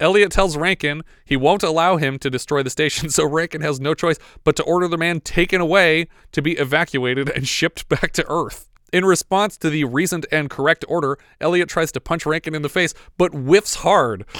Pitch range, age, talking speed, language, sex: 135-165 Hz, 30-49, 210 wpm, English, male